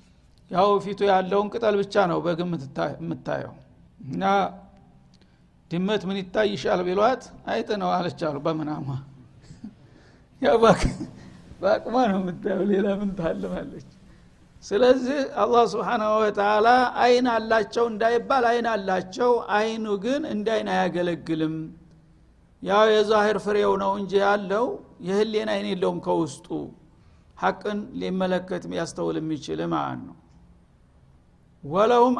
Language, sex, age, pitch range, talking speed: Amharic, male, 60-79, 175-220 Hz, 100 wpm